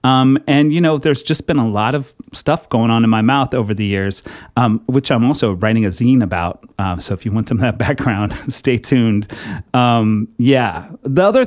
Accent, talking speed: American, 220 wpm